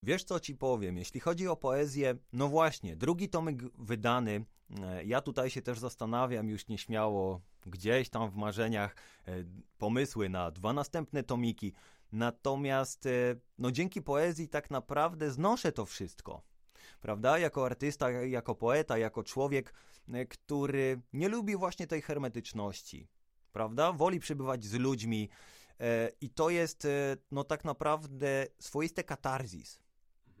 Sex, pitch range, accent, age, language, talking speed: male, 110-140 Hz, native, 20-39, Polish, 125 wpm